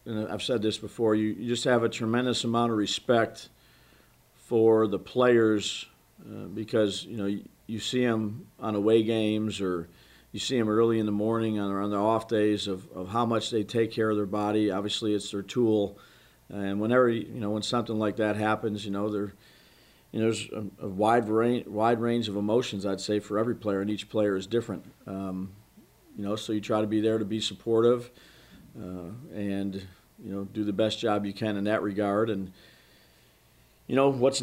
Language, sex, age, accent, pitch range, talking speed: English, male, 50-69, American, 100-115 Hz, 205 wpm